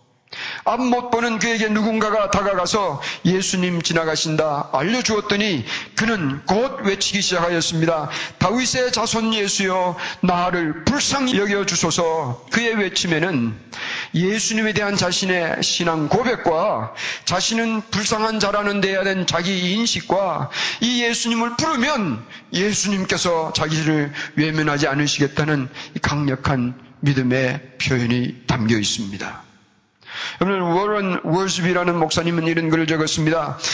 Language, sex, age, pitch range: Korean, male, 40-59, 155-205 Hz